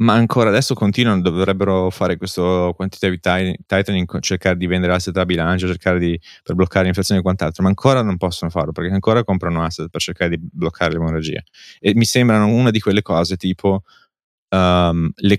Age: 20-39